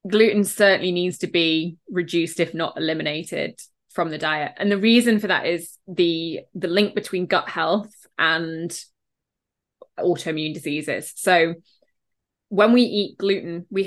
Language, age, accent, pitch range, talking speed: English, 20-39, British, 170-205 Hz, 145 wpm